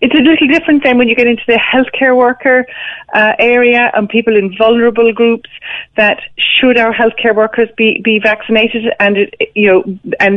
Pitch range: 185-230 Hz